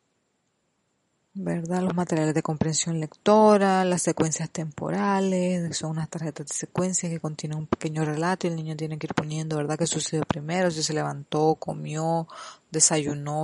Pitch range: 160-185 Hz